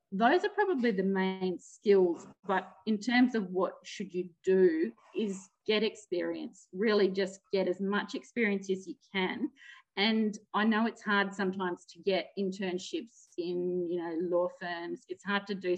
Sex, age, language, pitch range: female, 40-59, English, 180-235 Hz